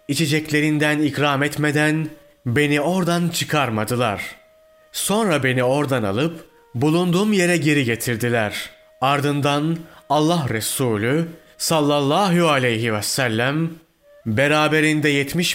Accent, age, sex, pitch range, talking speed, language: native, 30-49, male, 130-165 Hz, 90 wpm, Turkish